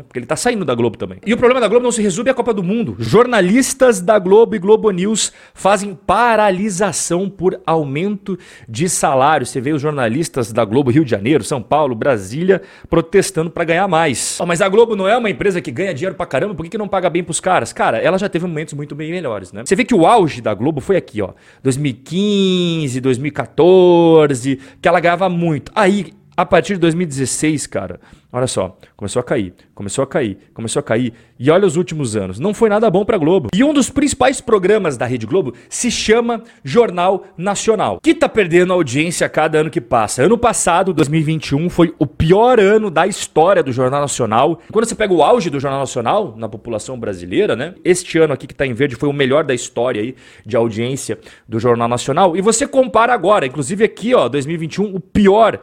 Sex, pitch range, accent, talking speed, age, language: male, 140-210 Hz, Brazilian, 210 wpm, 40-59, Portuguese